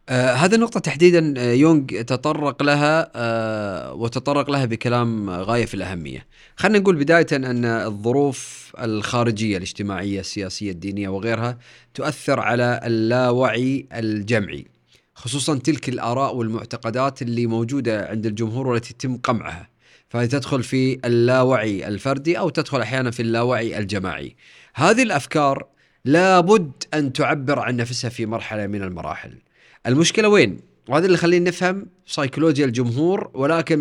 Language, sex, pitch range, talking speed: Arabic, male, 115-155 Hz, 125 wpm